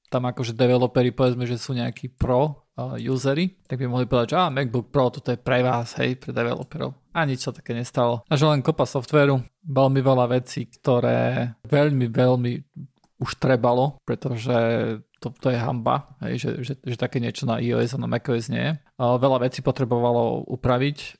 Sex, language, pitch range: male, Slovak, 125-145 Hz